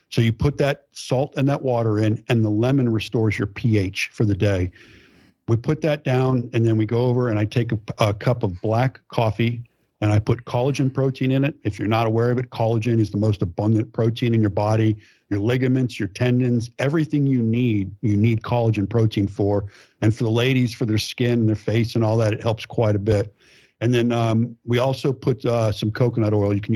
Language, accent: English, American